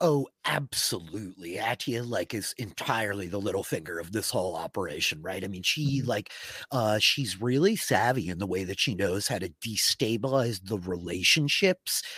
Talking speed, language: 165 wpm, English